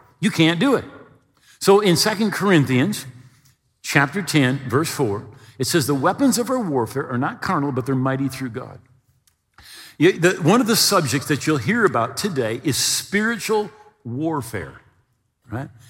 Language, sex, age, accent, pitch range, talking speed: English, male, 50-69, American, 120-180 Hz, 150 wpm